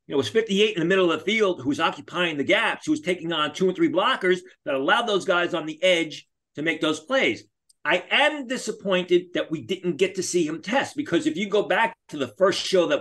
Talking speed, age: 250 wpm, 40-59